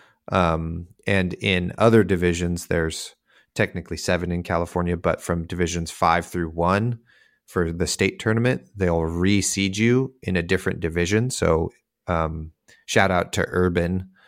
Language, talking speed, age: English, 140 wpm, 30-49